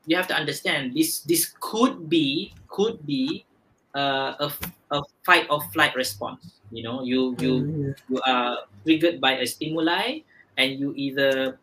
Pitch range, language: 130-170 Hz, Malay